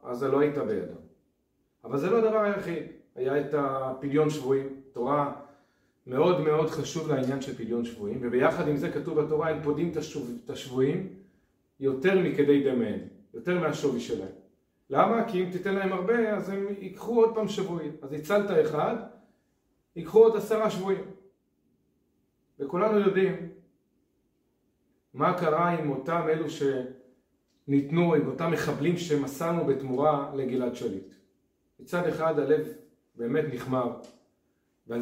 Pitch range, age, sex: 135-165 Hz, 40-59, male